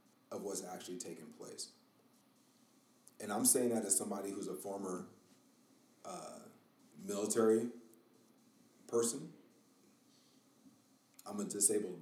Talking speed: 100 wpm